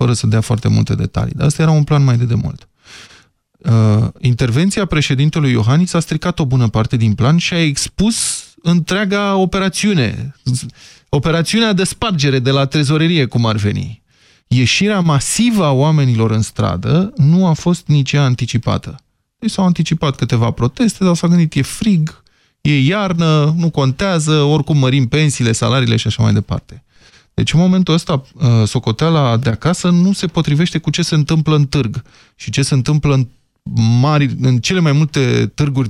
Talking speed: 165 wpm